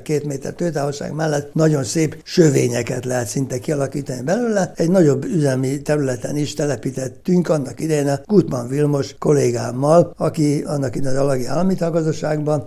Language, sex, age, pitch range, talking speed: Hungarian, male, 60-79, 130-160 Hz, 135 wpm